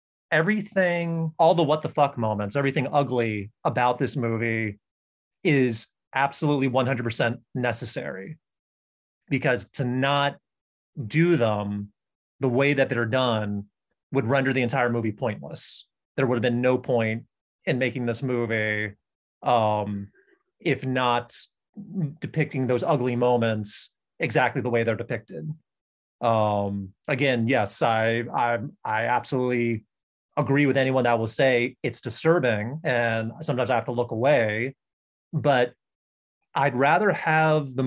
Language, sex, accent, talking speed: English, male, American, 130 wpm